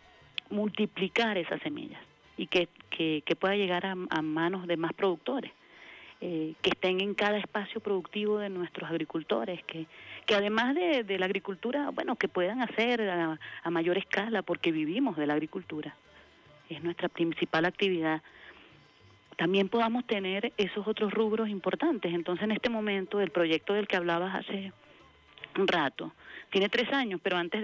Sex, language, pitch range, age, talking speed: female, Spanish, 165-205 Hz, 30-49, 155 wpm